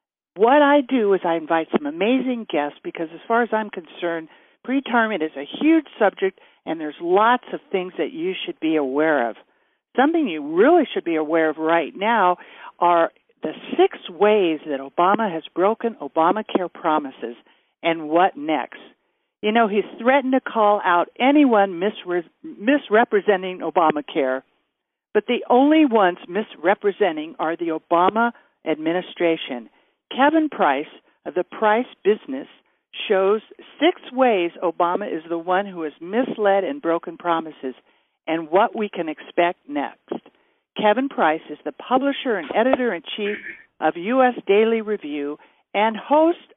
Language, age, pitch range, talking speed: English, 60-79, 170-260 Hz, 145 wpm